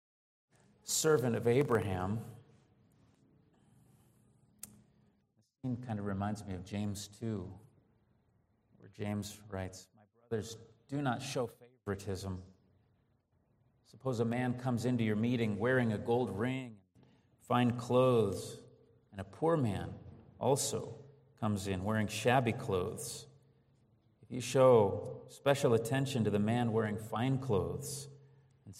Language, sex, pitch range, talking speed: English, male, 110-125 Hz, 120 wpm